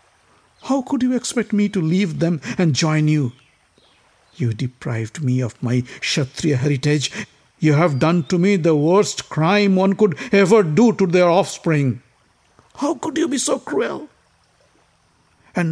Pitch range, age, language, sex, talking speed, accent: 125-205 Hz, 60-79, English, male, 155 wpm, Indian